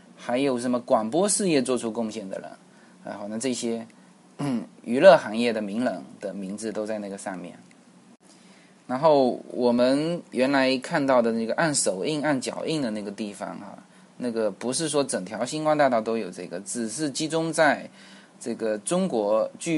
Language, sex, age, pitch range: Chinese, male, 20-39, 110-150 Hz